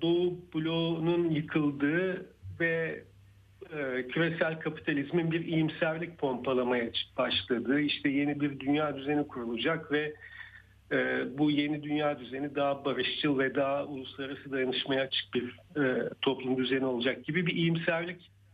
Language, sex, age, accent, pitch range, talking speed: Turkish, male, 50-69, native, 120-170 Hz, 125 wpm